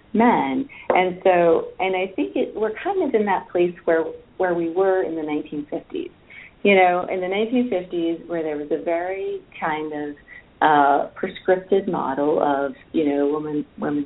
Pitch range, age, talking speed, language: 150-185 Hz, 40-59, 170 wpm, English